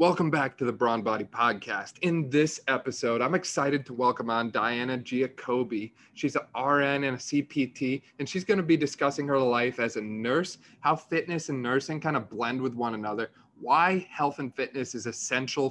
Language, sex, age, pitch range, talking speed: English, male, 20-39, 120-145 Hz, 190 wpm